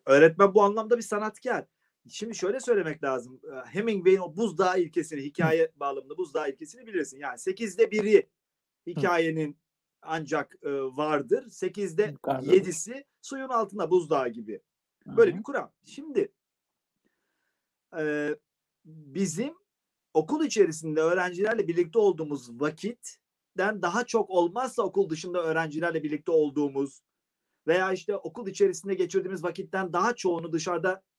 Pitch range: 160-225 Hz